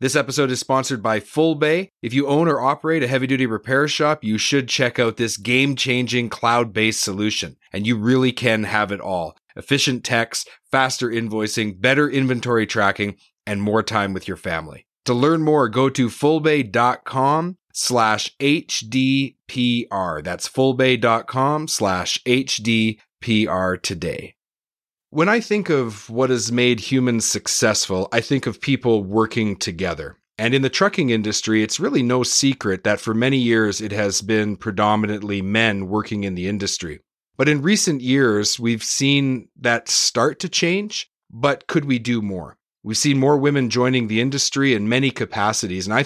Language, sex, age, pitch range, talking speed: English, male, 30-49, 110-135 Hz, 155 wpm